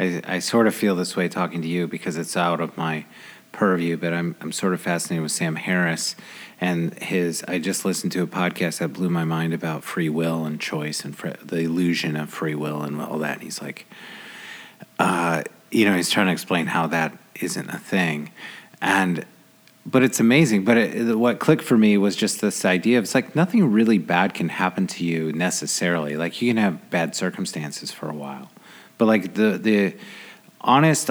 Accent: American